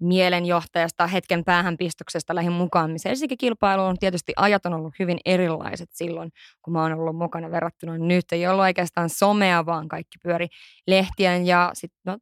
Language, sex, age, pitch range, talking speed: Finnish, female, 20-39, 170-205 Hz, 150 wpm